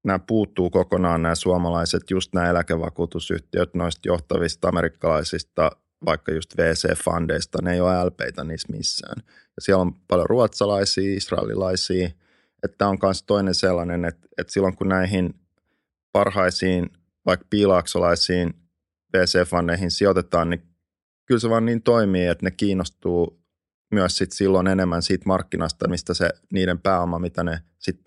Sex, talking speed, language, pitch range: male, 140 wpm, Finnish, 85-95 Hz